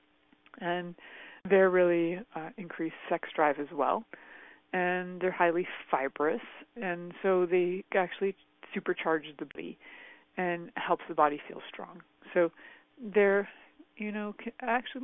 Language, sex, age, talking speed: English, female, 30-49, 130 wpm